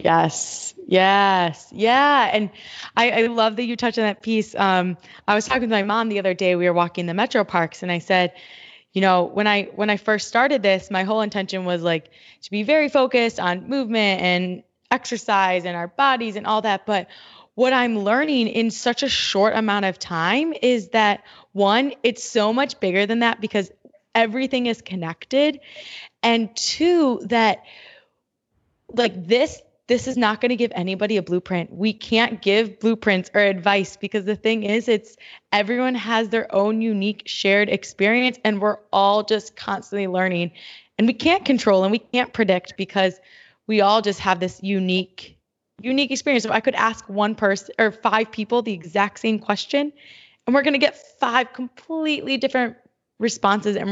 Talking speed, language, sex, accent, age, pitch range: 180 wpm, English, female, American, 20-39, 195-240 Hz